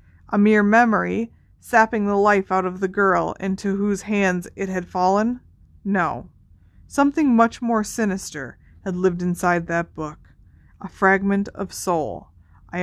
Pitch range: 175-225 Hz